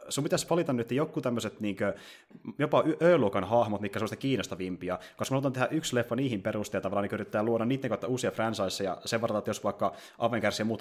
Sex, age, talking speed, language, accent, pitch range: male, 30-49, 195 wpm, Finnish, native, 95-115 Hz